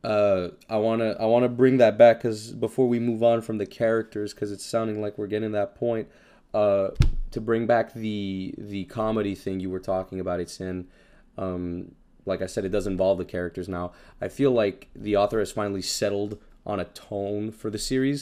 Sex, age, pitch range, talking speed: male, 20-39, 100-125 Hz, 210 wpm